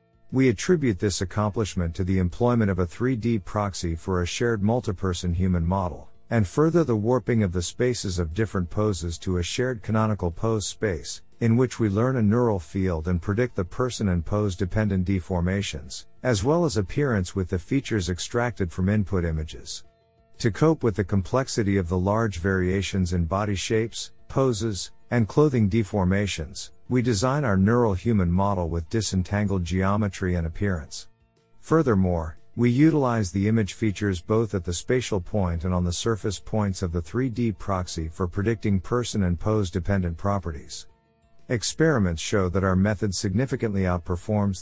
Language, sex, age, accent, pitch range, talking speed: English, male, 50-69, American, 90-115 Hz, 160 wpm